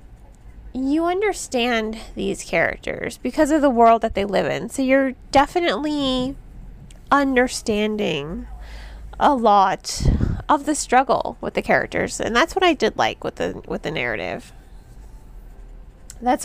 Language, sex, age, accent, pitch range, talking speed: English, female, 20-39, American, 230-280 Hz, 130 wpm